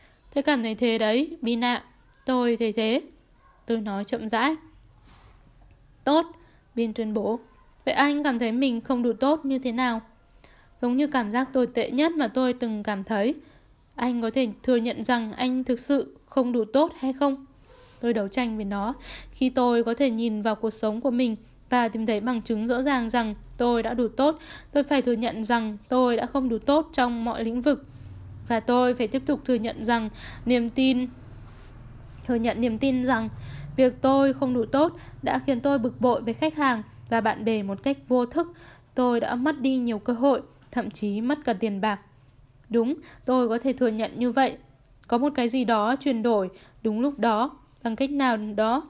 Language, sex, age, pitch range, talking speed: Vietnamese, female, 10-29, 225-265 Hz, 205 wpm